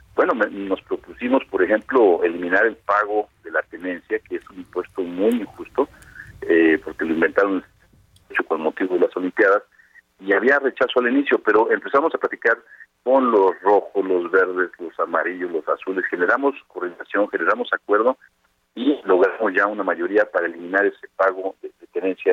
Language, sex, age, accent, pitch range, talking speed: Spanish, male, 40-59, Mexican, 270-450 Hz, 160 wpm